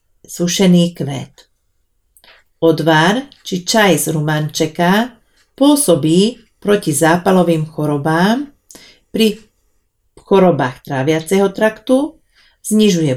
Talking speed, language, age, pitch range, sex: 75 wpm, Slovak, 50-69, 155-205 Hz, female